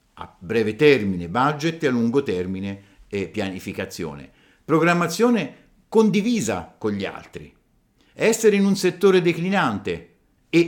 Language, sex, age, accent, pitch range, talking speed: Italian, male, 50-69, native, 110-160 Hz, 120 wpm